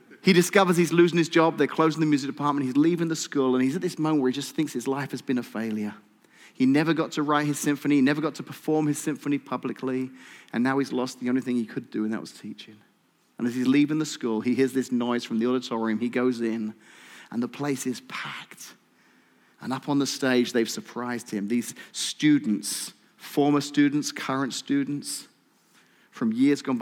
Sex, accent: male, British